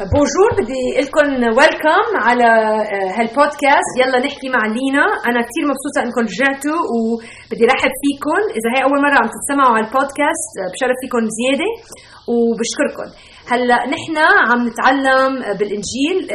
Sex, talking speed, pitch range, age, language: female, 130 wpm, 215-280 Hz, 30-49, Arabic